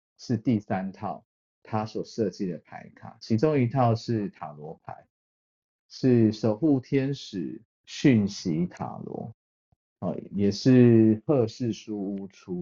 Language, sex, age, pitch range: Chinese, male, 50-69, 100-140 Hz